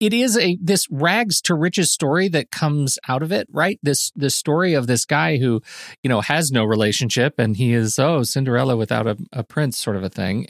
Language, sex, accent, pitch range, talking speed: English, male, American, 115-155 Hz, 225 wpm